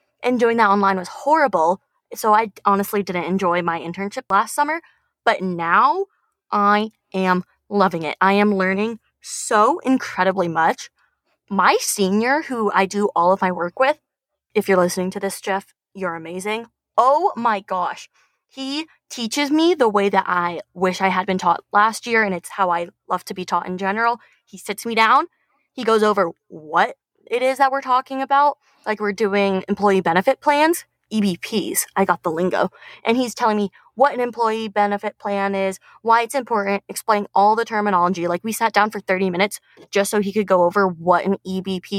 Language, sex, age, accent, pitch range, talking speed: English, female, 20-39, American, 185-240 Hz, 185 wpm